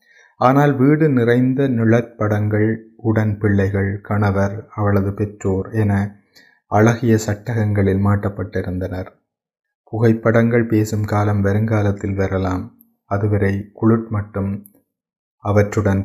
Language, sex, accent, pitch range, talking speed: Tamil, male, native, 100-115 Hz, 80 wpm